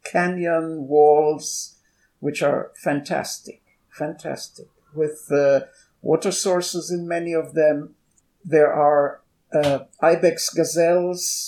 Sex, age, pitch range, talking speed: male, 60-79, 145-175 Hz, 100 wpm